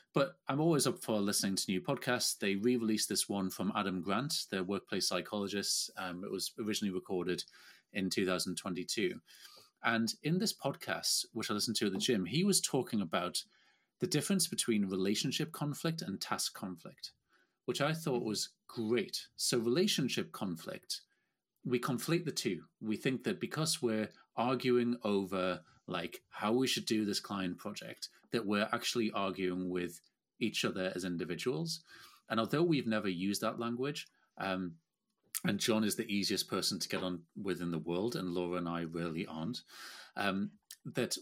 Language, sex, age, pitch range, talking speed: English, male, 30-49, 95-130 Hz, 165 wpm